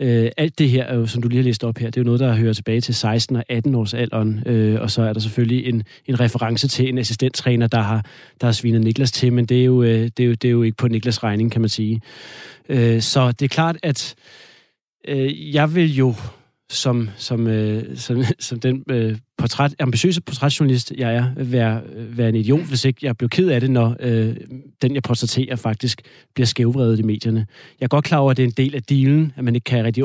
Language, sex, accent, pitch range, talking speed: Danish, male, native, 115-130 Hz, 230 wpm